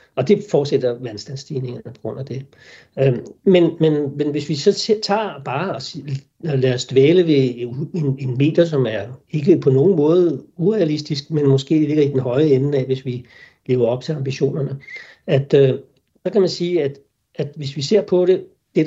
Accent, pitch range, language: native, 130-160 Hz, Danish